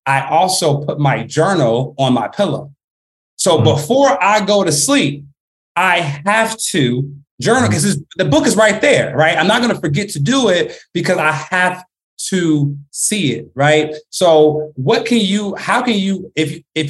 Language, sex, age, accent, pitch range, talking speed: English, male, 30-49, American, 135-170 Hz, 175 wpm